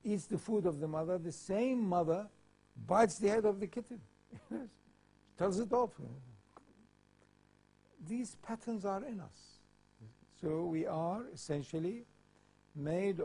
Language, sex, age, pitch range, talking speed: English, male, 60-79, 135-180 Hz, 125 wpm